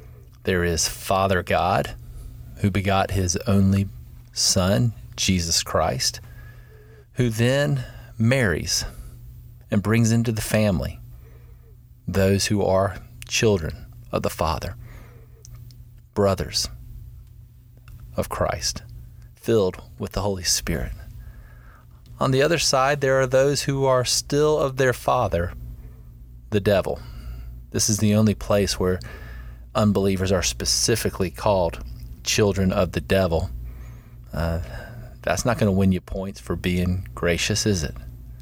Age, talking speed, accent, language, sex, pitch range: 30-49, 120 wpm, American, English, male, 85-115 Hz